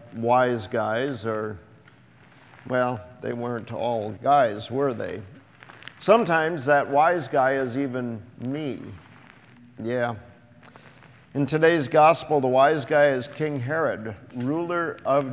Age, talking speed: 50-69, 115 wpm